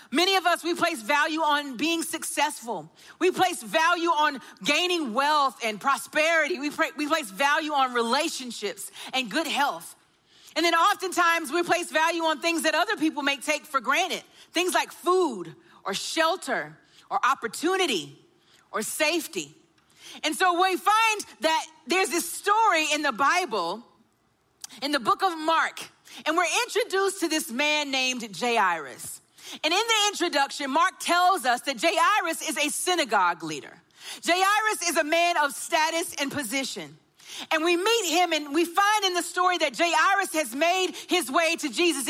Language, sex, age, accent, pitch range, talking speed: English, female, 40-59, American, 290-360 Hz, 160 wpm